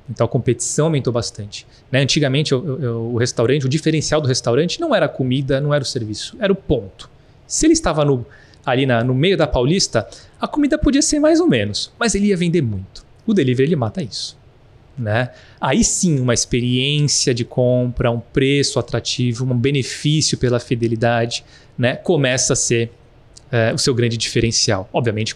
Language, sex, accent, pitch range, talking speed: Portuguese, male, Brazilian, 120-150 Hz, 180 wpm